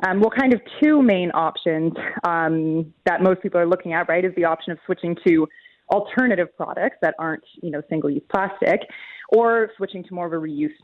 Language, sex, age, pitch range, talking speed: English, female, 20-39, 165-195 Hz, 200 wpm